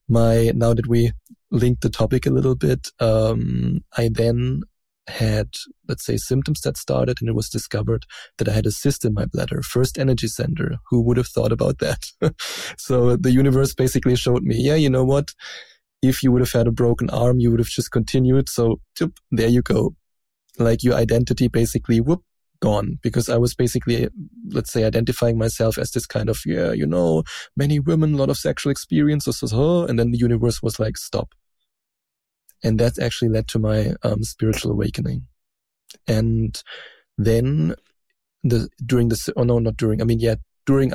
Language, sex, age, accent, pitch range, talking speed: English, male, 20-39, German, 110-130 Hz, 180 wpm